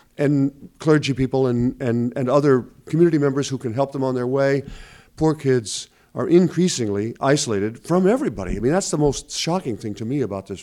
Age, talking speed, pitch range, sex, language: 50-69, 190 wpm, 120-155 Hz, male, English